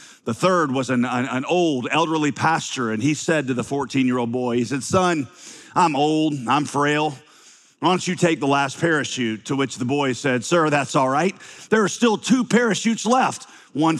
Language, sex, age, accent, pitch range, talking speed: English, male, 40-59, American, 145-210 Hz, 195 wpm